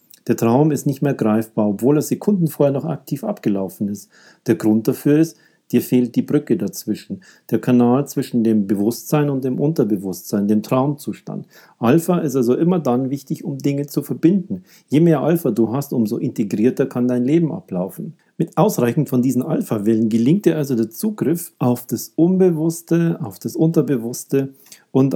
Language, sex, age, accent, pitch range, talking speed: German, male, 40-59, German, 110-155 Hz, 170 wpm